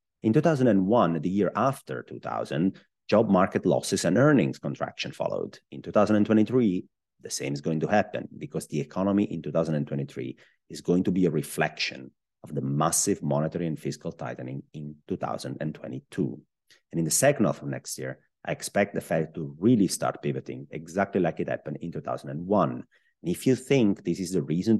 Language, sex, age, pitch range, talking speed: English, male, 30-49, 70-95 Hz, 170 wpm